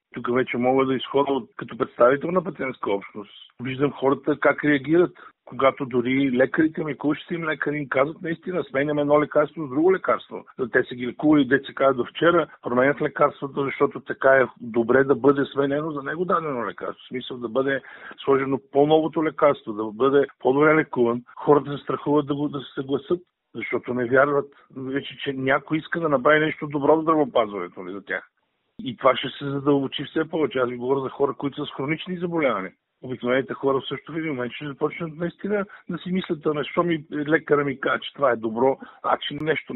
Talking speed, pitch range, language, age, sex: 195 wpm, 130-150 Hz, Bulgarian, 50-69, male